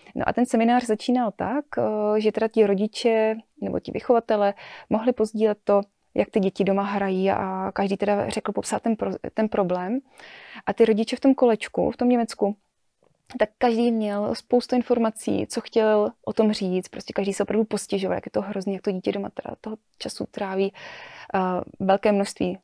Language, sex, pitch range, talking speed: Slovak, female, 195-225 Hz, 180 wpm